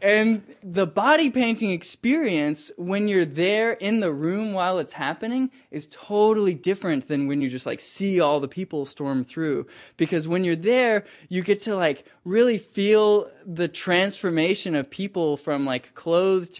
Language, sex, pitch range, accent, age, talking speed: English, male, 140-180 Hz, American, 20-39, 165 wpm